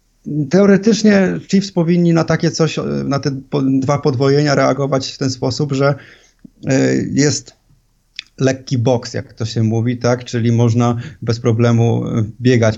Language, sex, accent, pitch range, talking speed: Polish, male, native, 115-135 Hz, 130 wpm